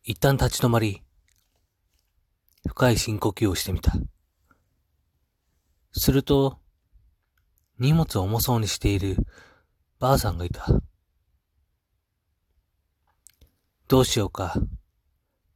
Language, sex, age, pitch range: Japanese, male, 40-59, 80-110 Hz